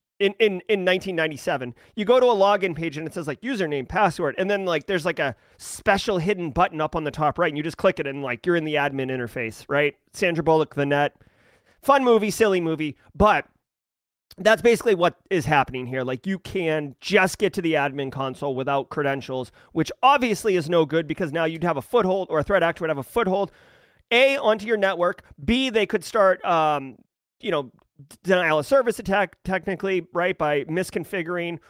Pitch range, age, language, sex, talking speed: 145-200 Hz, 30-49, English, male, 205 wpm